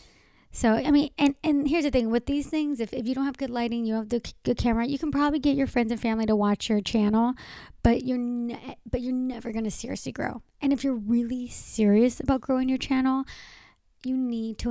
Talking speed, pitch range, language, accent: 235 wpm, 225-265 Hz, English, American